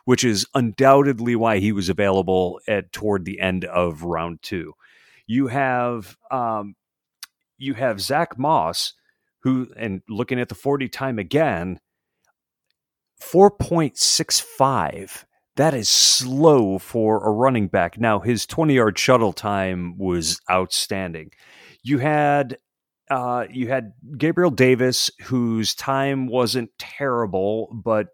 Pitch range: 95-130 Hz